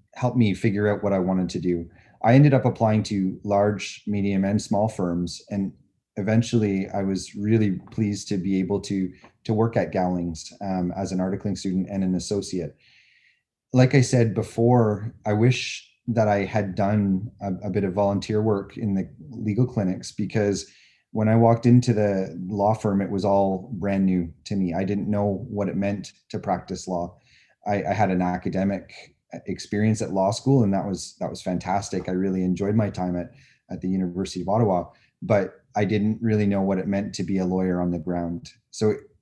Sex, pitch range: male, 95-110 Hz